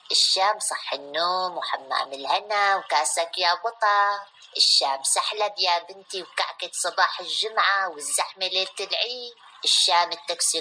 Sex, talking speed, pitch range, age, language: female, 115 wpm, 165-220 Hz, 20-39, Arabic